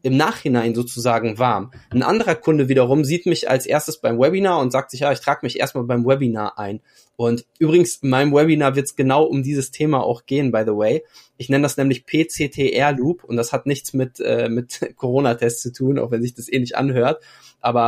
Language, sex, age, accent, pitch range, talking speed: German, male, 20-39, German, 120-150 Hz, 215 wpm